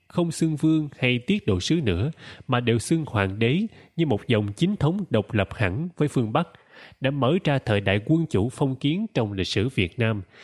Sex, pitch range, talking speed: male, 100-150 Hz, 220 wpm